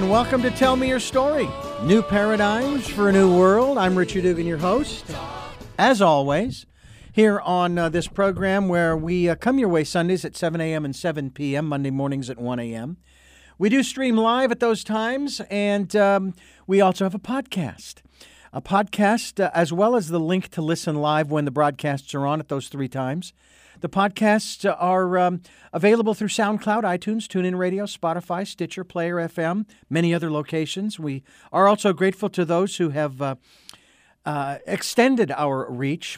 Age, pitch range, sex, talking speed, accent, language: 50-69, 145-205 Hz, male, 175 wpm, American, English